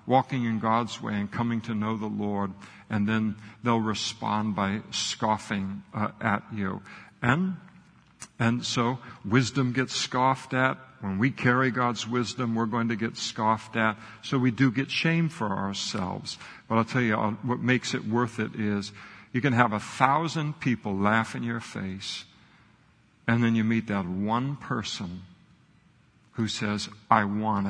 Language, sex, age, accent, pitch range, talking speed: English, male, 60-79, American, 105-125 Hz, 165 wpm